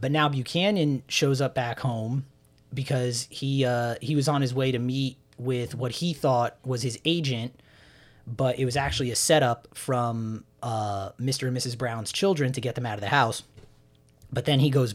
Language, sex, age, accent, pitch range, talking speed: English, male, 30-49, American, 120-145 Hz, 195 wpm